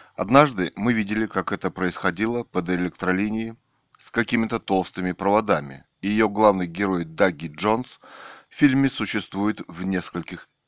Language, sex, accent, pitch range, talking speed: Russian, male, native, 95-115 Hz, 125 wpm